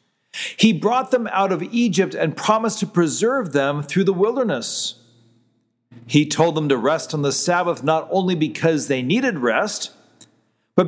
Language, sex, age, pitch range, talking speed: English, male, 40-59, 140-210 Hz, 160 wpm